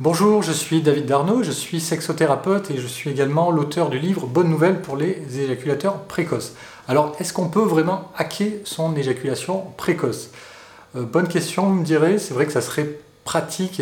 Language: French